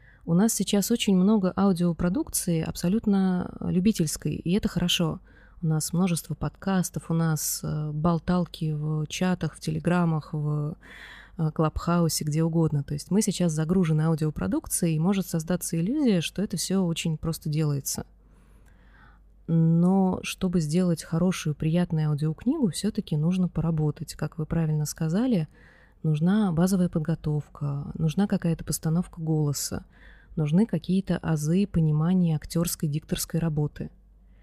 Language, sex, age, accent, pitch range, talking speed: Russian, female, 20-39, native, 155-185 Hz, 120 wpm